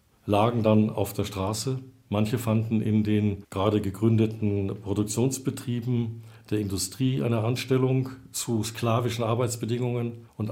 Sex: male